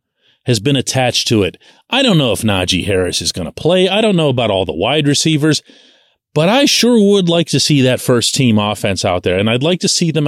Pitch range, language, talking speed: 105-155 Hz, English, 240 wpm